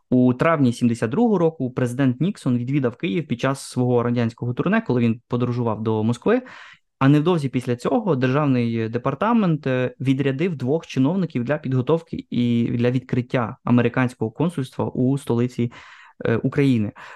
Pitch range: 120-150 Hz